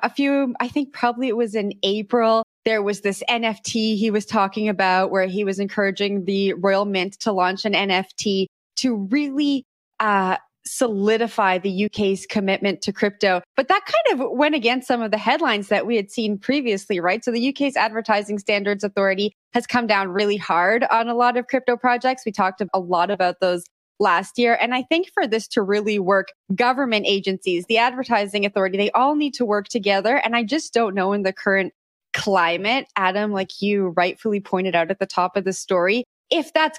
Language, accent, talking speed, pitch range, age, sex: English, American, 195 wpm, 190-230 Hz, 20-39, female